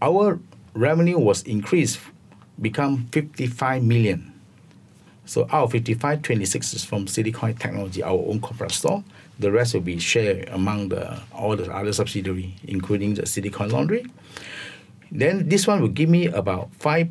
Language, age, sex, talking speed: English, 50-69, male, 160 wpm